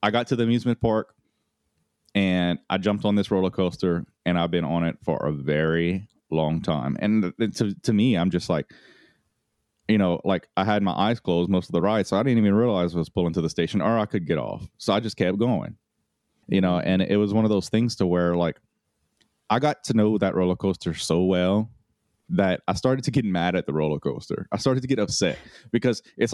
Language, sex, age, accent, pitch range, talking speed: English, male, 30-49, American, 90-115 Hz, 230 wpm